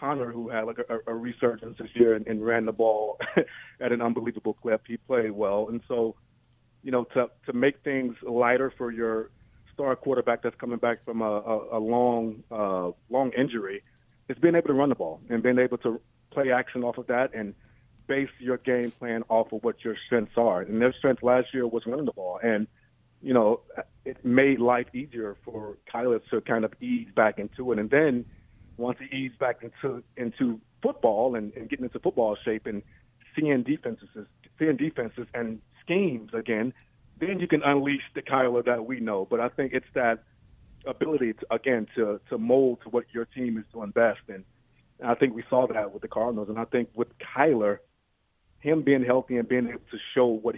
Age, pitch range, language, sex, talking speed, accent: 30-49, 110-130 Hz, English, male, 200 wpm, American